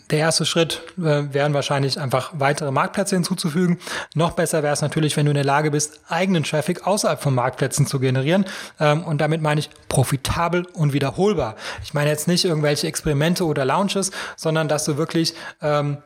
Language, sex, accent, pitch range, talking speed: German, male, German, 150-175 Hz, 185 wpm